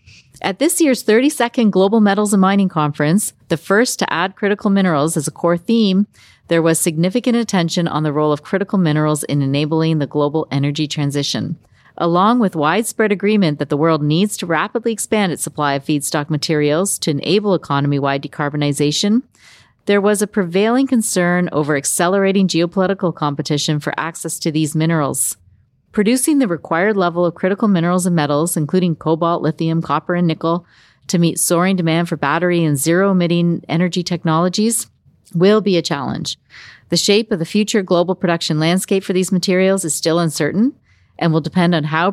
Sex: female